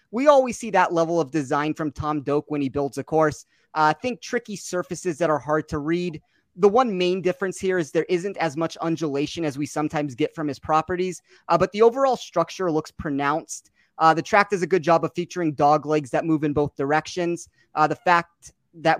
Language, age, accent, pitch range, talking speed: English, 30-49, American, 155-185 Hz, 220 wpm